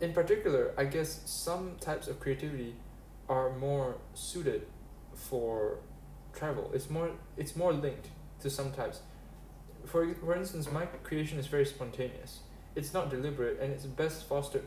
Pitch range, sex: 130-155 Hz, male